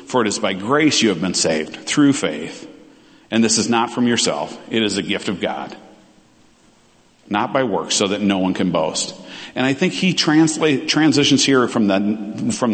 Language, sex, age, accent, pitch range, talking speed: English, male, 50-69, American, 110-155 Hz, 200 wpm